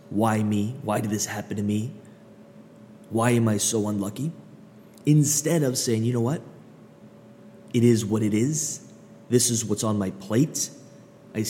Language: English